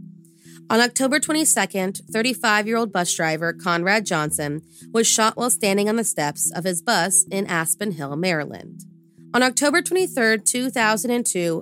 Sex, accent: female, American